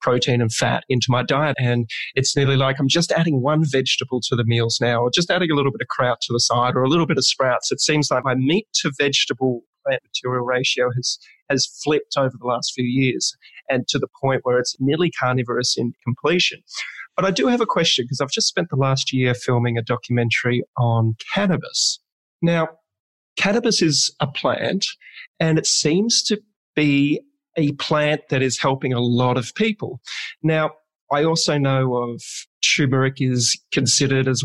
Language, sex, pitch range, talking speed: English, male, 125-155 Hz, 190 wpm